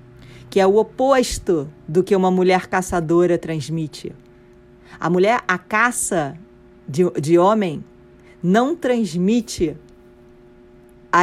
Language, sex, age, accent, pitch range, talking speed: Portuguese, female, 40-59, Brazilian, 145-195 Hz, 100 wpm